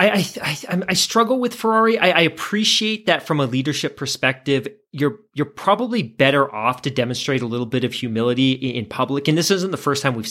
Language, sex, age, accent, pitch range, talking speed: English, male, 30-49, American, 135-175 Hz, 205 wpm